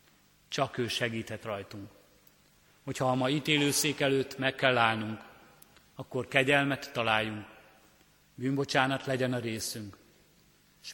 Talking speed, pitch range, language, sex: 110 wpm, 110-135 Hz, Hungarian, male